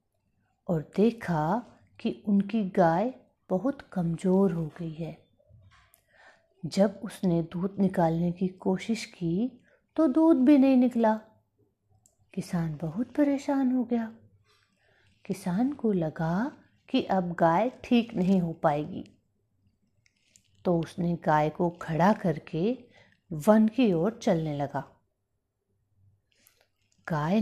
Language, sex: Hindi, female